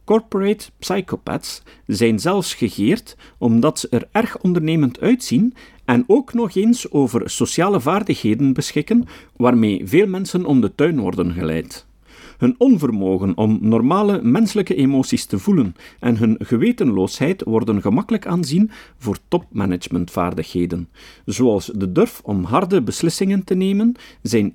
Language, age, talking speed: Dutch, 50-69, 125 wpm